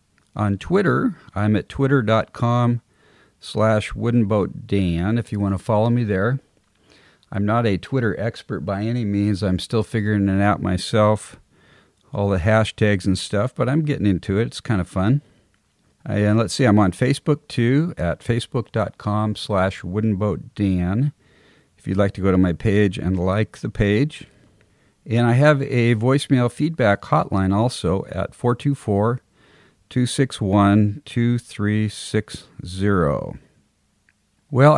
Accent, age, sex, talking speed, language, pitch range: American, 50-69, male, 130 wpm, English, 100-120 Hz